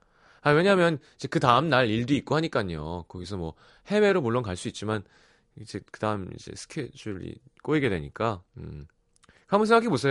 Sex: male